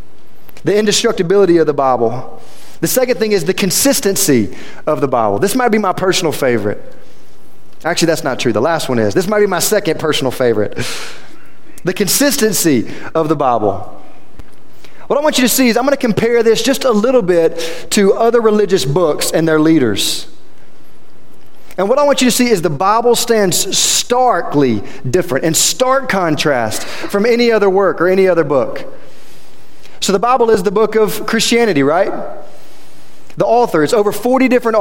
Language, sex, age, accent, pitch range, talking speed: English, male, 30-49, American, 170-230 Hz, 175 wpm